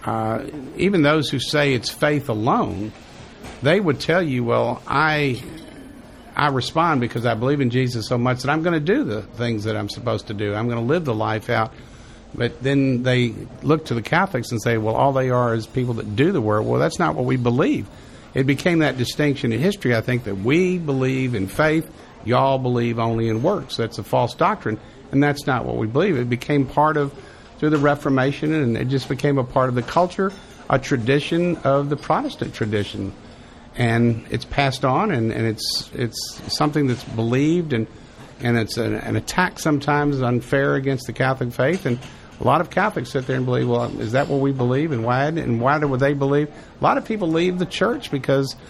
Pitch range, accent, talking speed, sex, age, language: 120-145 Hz, American, 210 wpm, male, 50-69, English